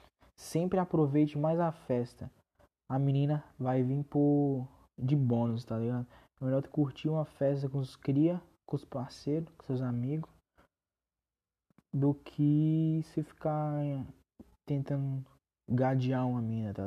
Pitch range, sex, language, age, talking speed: 110-150 Hz, male, Portuguese, 20-39, 130 wpm